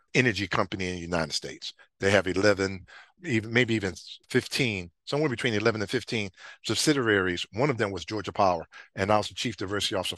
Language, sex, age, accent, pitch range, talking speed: English, male, 50-69, American, 95-115 Hz, 185 wpm